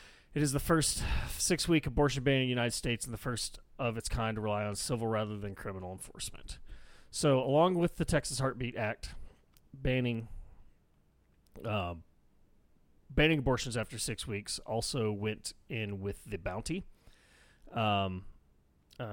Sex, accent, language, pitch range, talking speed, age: male, American, English, 105-130 Hz, 145 wpm, 30-49